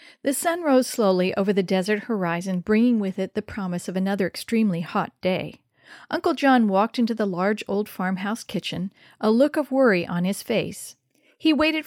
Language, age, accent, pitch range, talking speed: English, 50-69, American, 190-240 Hz, 180 wpm